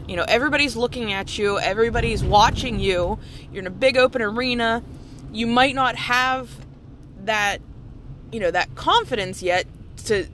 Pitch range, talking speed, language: 180-265 Hz, 150 wpm, English